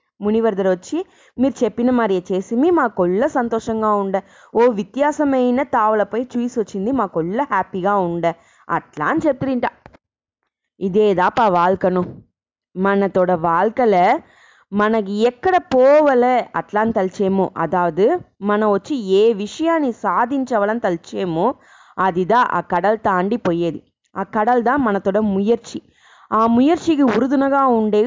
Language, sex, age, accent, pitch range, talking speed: English, female, 20-39, Indian, 200-270 Hz, 95 wpm